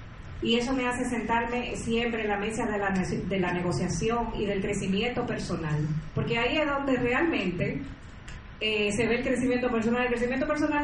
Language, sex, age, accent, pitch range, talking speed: Spanish, female, 30-49, American, 205-275 Hz, 170 wpm